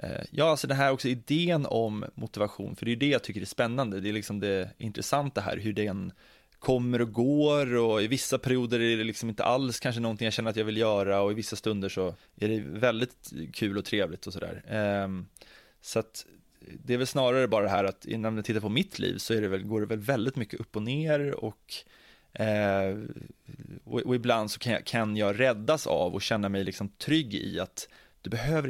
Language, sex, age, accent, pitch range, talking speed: English, male, 20-39, Swedish, 100-125 Hz, 215 wpm